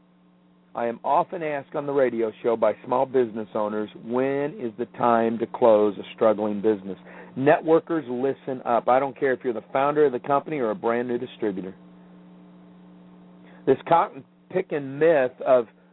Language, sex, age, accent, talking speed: English, male, 50-69, American, 165 wpm